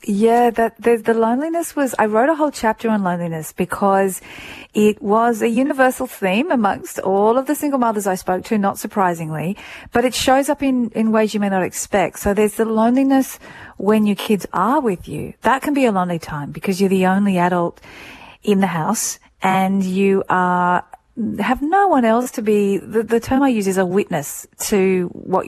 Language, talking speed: English, 200 wpm